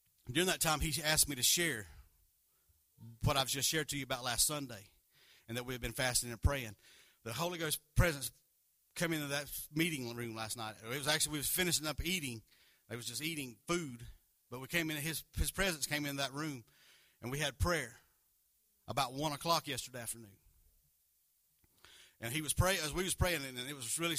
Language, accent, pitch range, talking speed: English, American, 115-160 Hz, 200 wpm